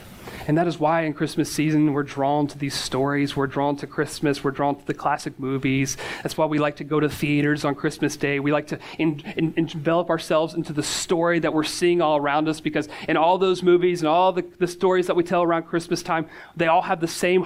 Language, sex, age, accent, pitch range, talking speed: English, male, 30-49, American, 155-185 Hz, 245 wpm